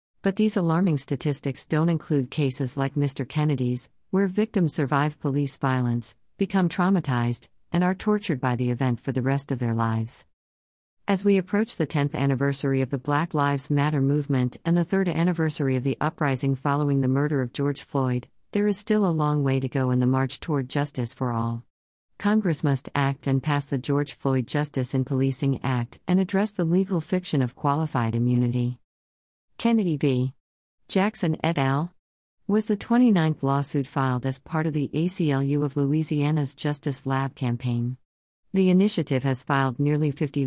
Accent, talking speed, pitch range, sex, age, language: American, 170 wpm, 130-160 Hz, female, 50-69, English